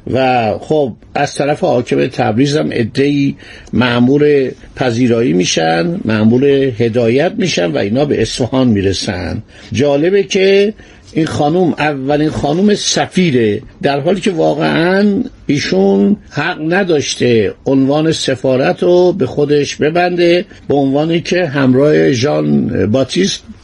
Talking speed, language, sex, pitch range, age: 110 wpm, Persian, male, 125-170 Hz, 50-69